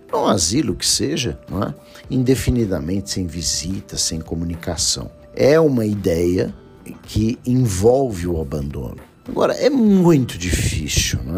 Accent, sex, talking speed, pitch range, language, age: Brazilian, male, 130 wpm, 85-110 Hz, Portuguese, 50-69